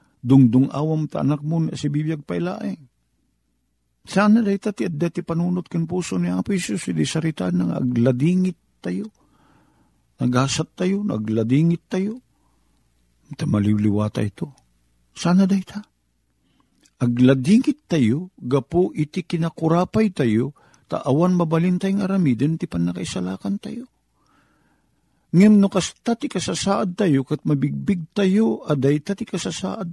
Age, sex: 50-69, male